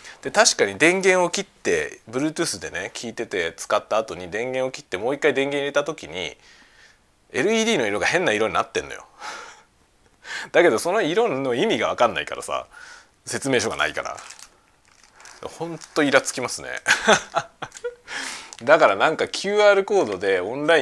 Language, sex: Japanese, male